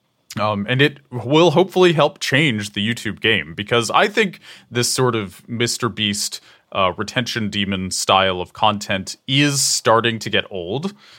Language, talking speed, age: English, 155 wpm, 20-39